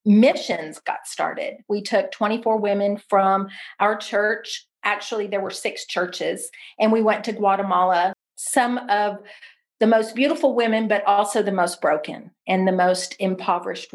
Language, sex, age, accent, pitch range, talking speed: English, female, 40-59, American, 190-230 Hz, 150 wpm